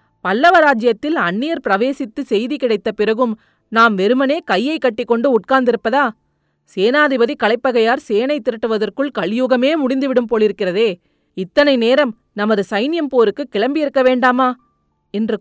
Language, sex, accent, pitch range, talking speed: Tamil, female, native, 200-275 Hz, 105 wpm